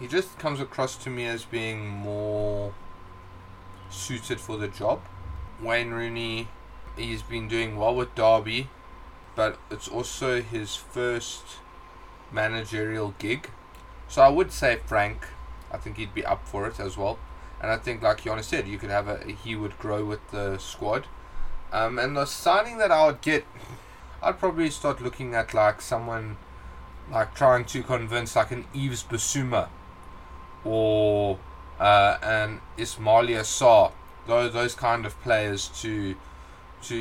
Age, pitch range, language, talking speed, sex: 20-39, 100-115 Hz, English, 150 wpm, male